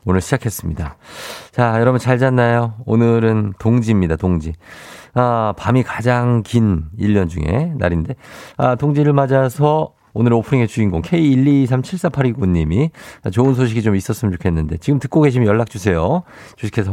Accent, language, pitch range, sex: native, Korean, 100-145 Hz, male